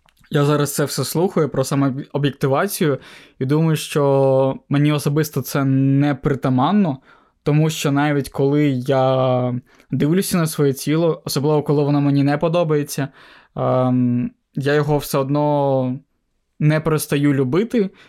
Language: Ukrainian